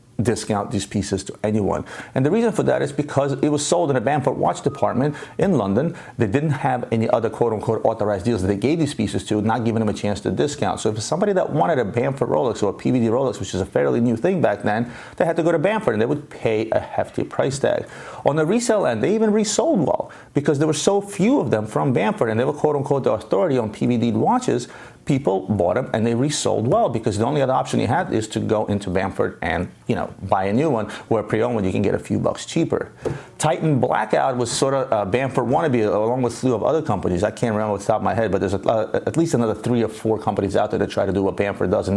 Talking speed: 265 wpm